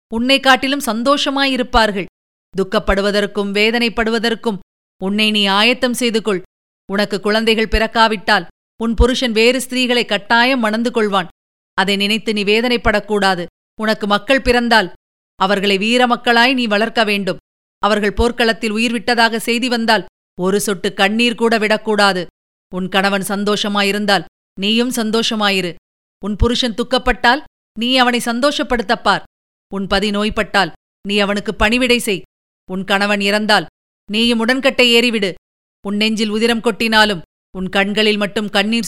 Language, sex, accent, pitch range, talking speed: Tamil, female, native, 200-235 Hz, 115 wpm